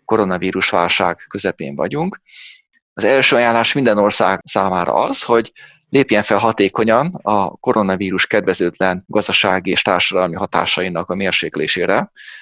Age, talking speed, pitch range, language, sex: 30-49, 115 wpm, 95-115 Hz, Hungarian, male